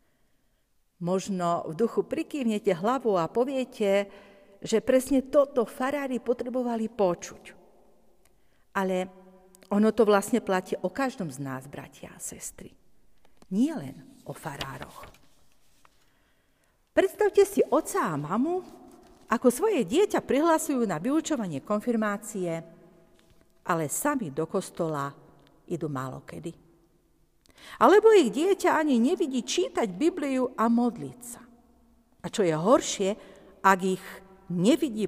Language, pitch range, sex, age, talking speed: Slovak, 185-275 Hz, female, 50-69, 110 wpm